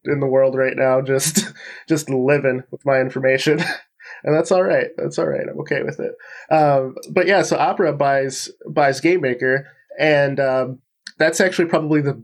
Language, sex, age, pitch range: English, male, 20-39, 125-150 Hz